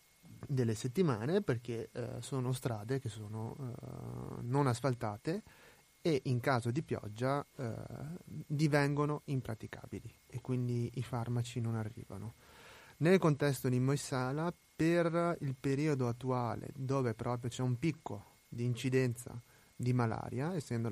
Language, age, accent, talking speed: Italian, 30-49, native, 125 wpm